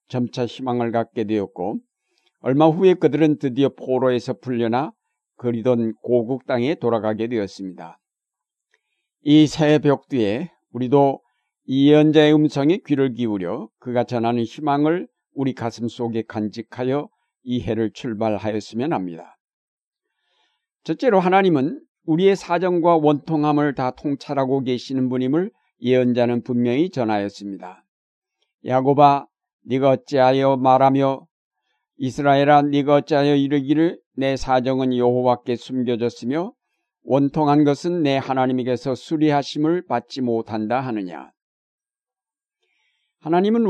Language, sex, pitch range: Korean, male, 120-150 Hz